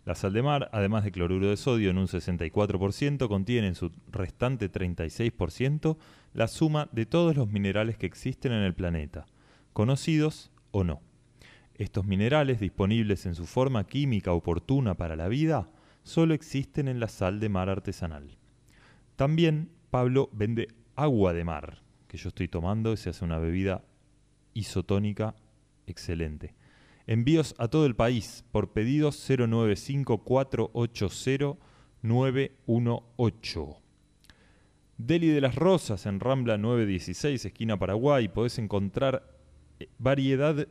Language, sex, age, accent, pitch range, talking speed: Spanish, male, 20-39, Argentinian, 95-135 Hz, 130 wpm